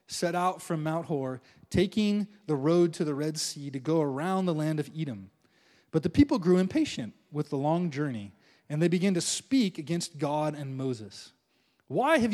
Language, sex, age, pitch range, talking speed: English, male, 20-39, 140-195 Hz, 190 wpm